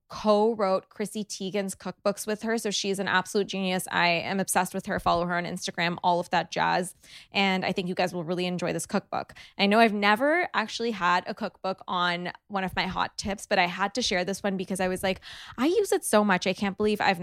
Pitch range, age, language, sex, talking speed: 180-215 Hz, 20-39, English, female, 235 wpm